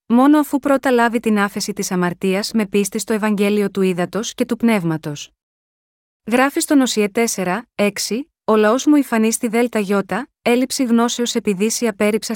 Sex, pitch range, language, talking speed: female, 195-240 Hz, Greek, 160 wpm